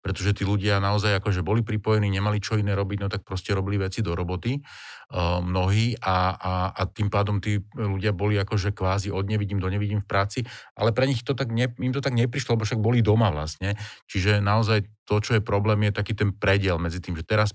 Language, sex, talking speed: Slovak, male, 220 wpm